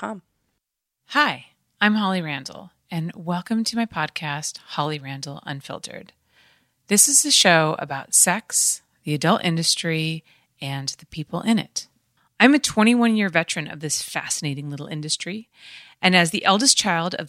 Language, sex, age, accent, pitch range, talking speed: English, female, 30-49, American, 155-215 Hz, 140 wpm